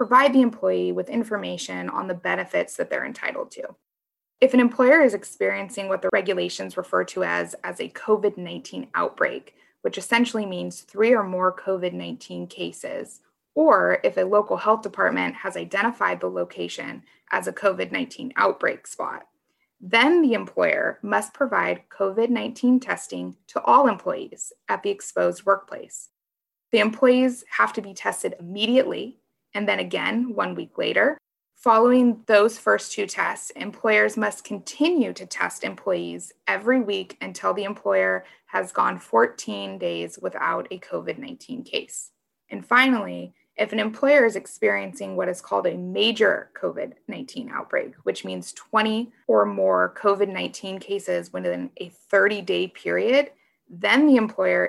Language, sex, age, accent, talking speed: English, female, 20-39, American, 140 wpm